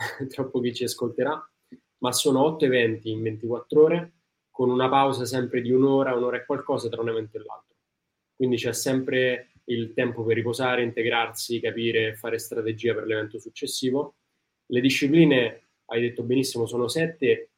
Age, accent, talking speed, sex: 20-39, native, 155 wpm, male